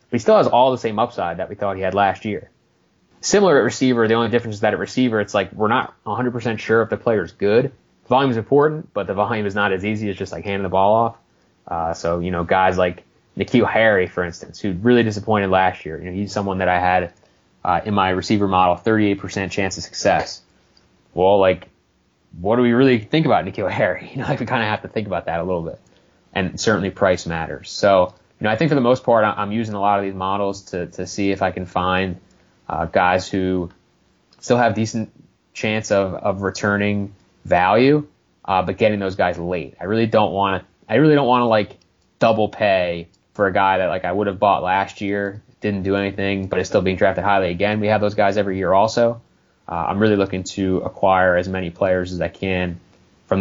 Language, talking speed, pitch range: English, 230 wpm, 90-110 Hz